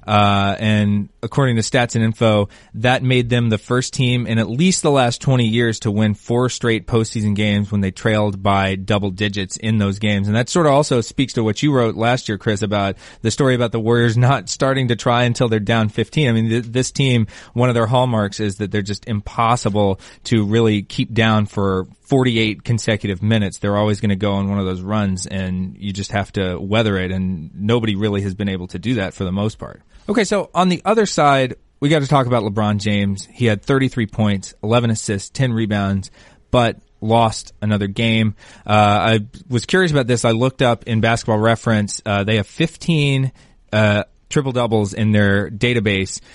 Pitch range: 105-120 Hz